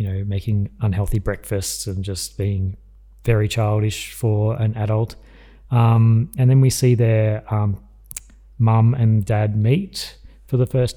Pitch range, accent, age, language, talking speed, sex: 105-115 Hz, Australian, 30-49, English, 140 wpm, male